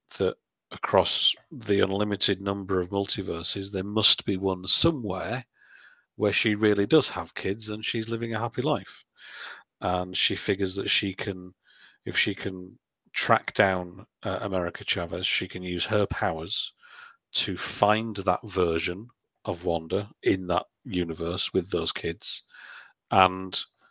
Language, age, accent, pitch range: English, 50-69, British, 95-100 Hz